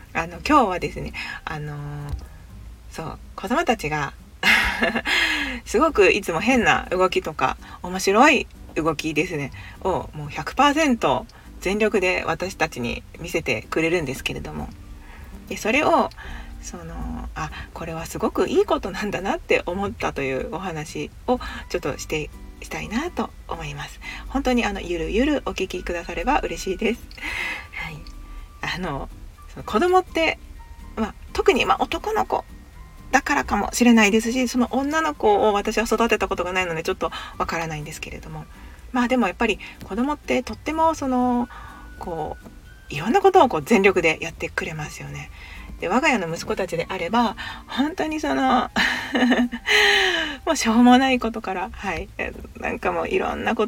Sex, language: female, Japanese